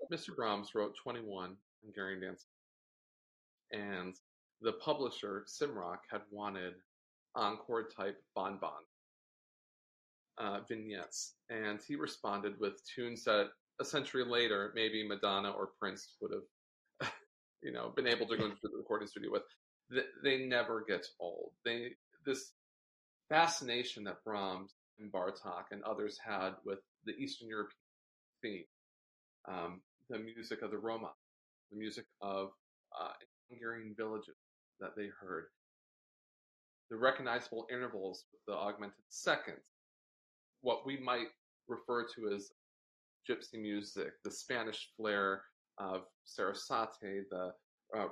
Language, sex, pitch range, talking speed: English, male, 100-120 Hz, 120 wpm